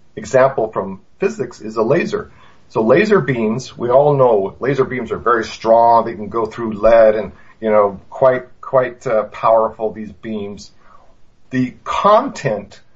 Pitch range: 110-130 Hz